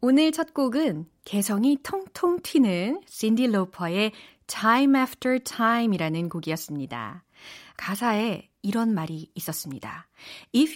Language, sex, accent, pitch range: Korean, female, native, 180-255 Hz